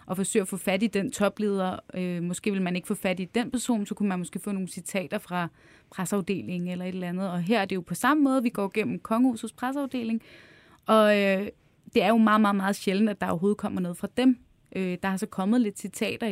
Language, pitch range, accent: Danish, 190-230 Hz, native